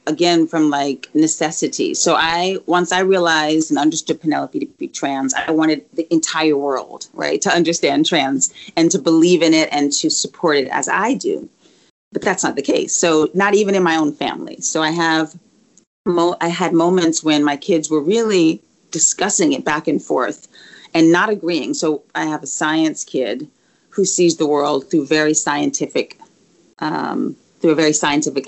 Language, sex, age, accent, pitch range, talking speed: English, female, 30-49, American, 150-185 Hz, 180 wpm